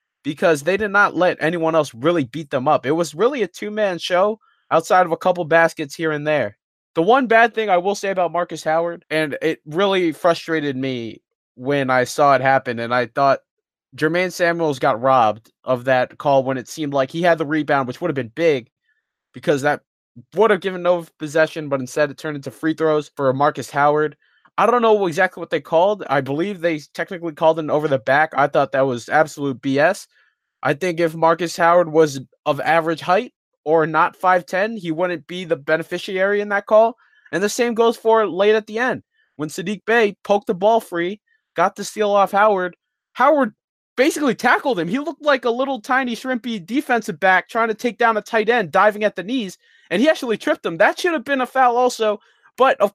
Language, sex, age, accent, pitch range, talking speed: English, male, 20-39, American, 155-215 Hz, 210 wpm